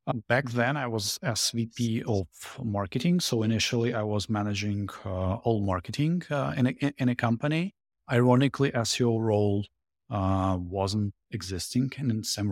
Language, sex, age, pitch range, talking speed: English, male, 30-49, 95-120 Hz, 145 wpm